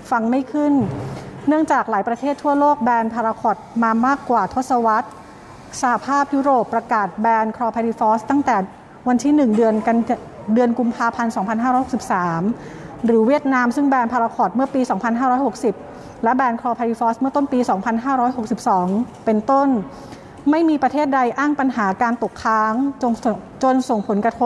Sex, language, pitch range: female, Thai, 215-260 Hz